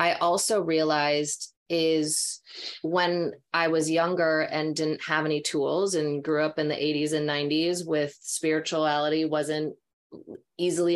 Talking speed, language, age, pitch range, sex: 135 wpm, English, 30-49, 155-180 Hz, female